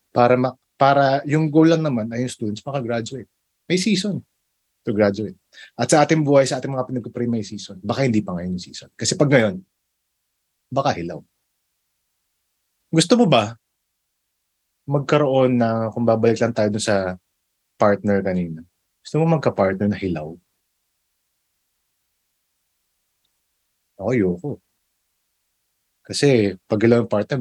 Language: English